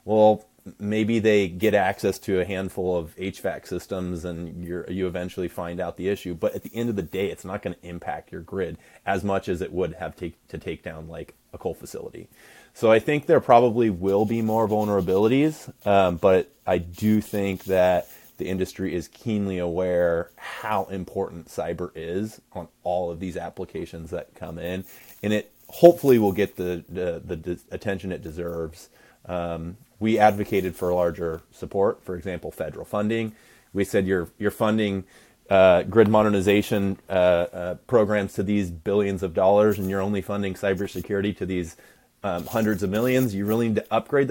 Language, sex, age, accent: English, male, 30-49, American